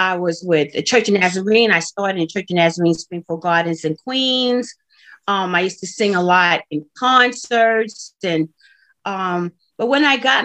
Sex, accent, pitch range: female, American, 180-250 Hz